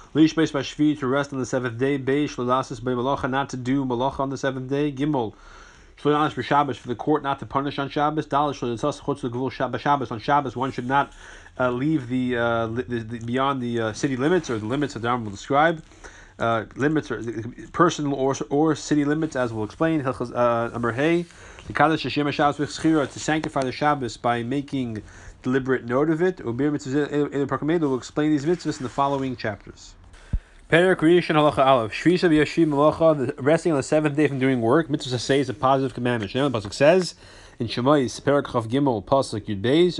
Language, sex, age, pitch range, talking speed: English, male, 30-49, 120-150 Hz, 165 wpm